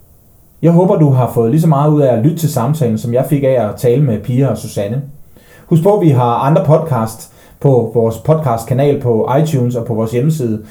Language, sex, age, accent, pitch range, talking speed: Danish, male, 30-49, native, 120-155 Hz, 225 wpm